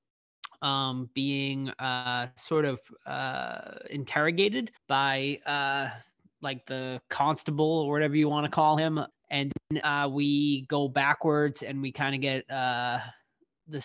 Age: 20-39